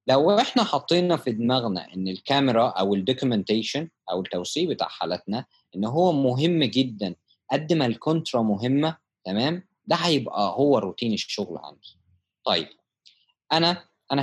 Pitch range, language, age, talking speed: 105-160 Hz, Arabic, 20-39, 130 wpm